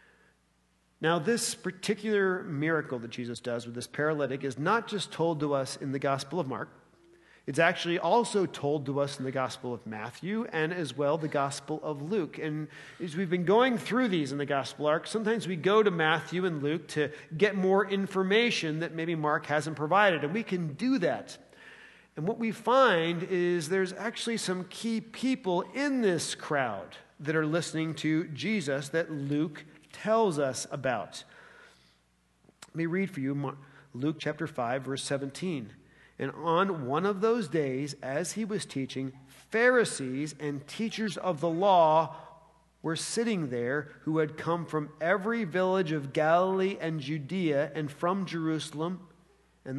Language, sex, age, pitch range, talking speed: English, male, 40-59, 140-190 Hz, 165 wpm